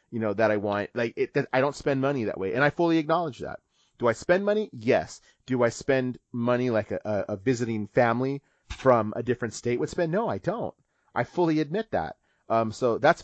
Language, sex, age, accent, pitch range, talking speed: English, male, 30-49, American, 115-150 Hz, 225 wpm